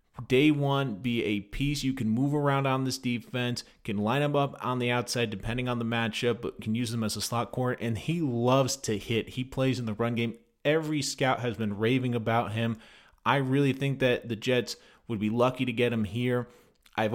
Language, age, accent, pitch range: English, 30-49, American, 115-135 Hz